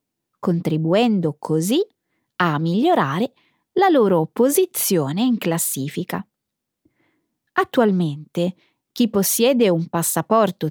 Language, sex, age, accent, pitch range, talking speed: Italian, female, 20-39, native, 170-250 Hz, 80 wpm